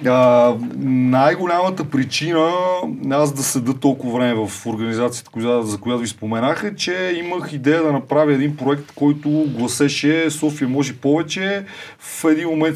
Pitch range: 130-170 Hz